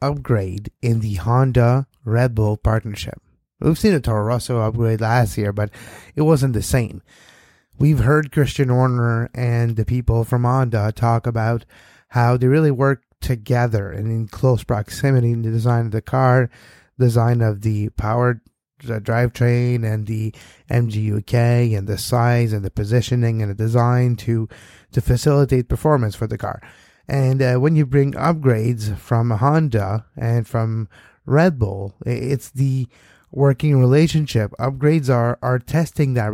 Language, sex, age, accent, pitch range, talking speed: English, male, 20-39, American, 110-130 Hz, 150 wpm